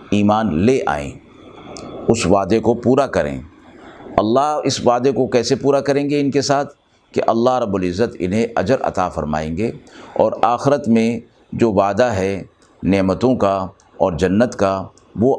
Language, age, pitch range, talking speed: Urdu, 60-79, 95-130 Hz, 155 wpm